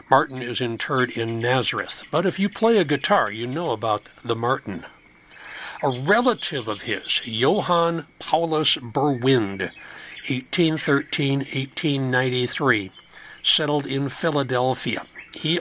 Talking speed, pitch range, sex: 110 wpm, 120-155 Hz, male